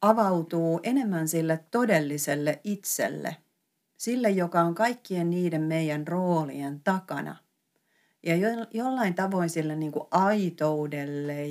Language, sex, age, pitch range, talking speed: Finnish, female, 40-59, 155-195 Hz, 95 wpm